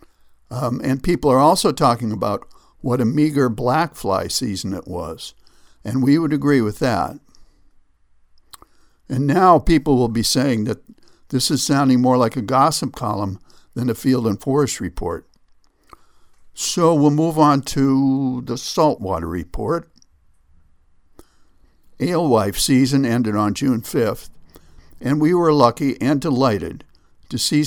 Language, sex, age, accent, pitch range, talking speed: English, male, 60-79, American, 90-135 Hz, 140 wpm